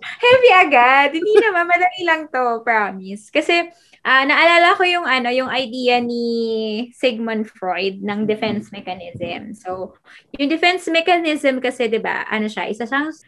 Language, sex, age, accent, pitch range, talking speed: Filipino, female, 20-39, native, 205-265 Hz, 145 wpm